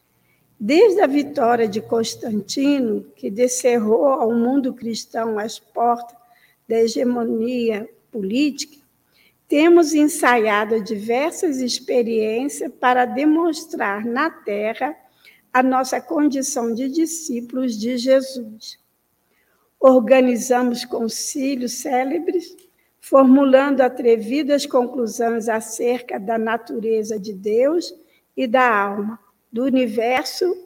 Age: 60-79